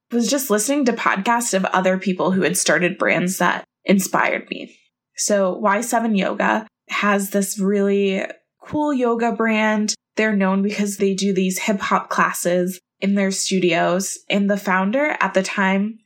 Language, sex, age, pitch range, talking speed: English, female, 20-39, 185-220 Hz, 155 wpm